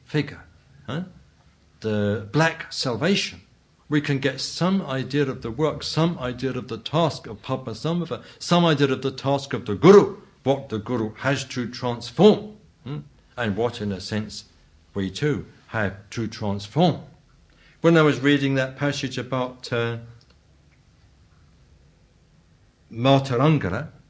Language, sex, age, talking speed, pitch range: English, male, 60-79, 135 wpm, 120-165 Hz